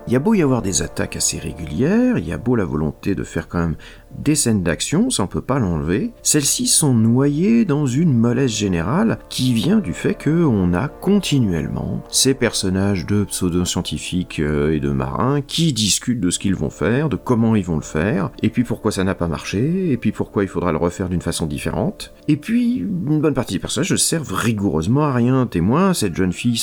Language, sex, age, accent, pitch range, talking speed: French, male, 40-59, French, 85-130 Hz, 215 wpm